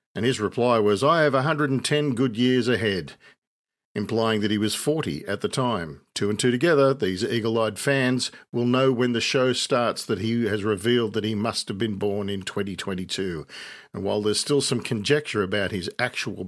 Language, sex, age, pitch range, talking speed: English, male, 50-69, 105-130 Hz, 190 wpm